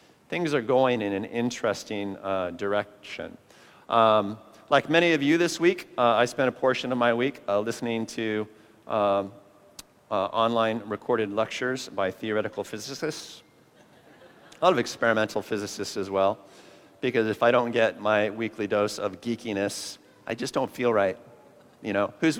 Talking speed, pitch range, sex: 160 wpm, 105-130 Hz, male